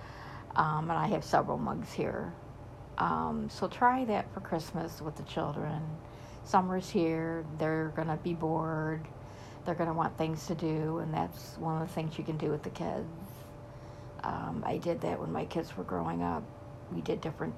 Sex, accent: female, American